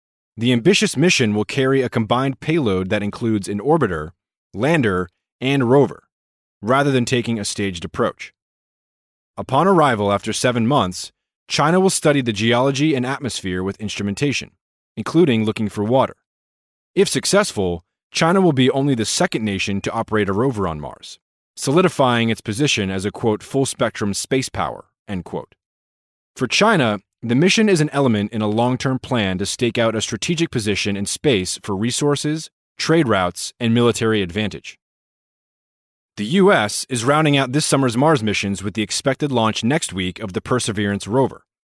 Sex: male